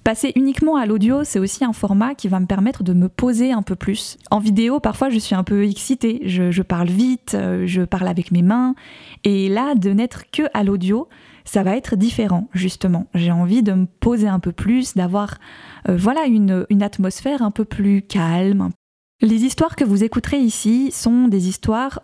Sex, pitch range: female, 185-230 Hz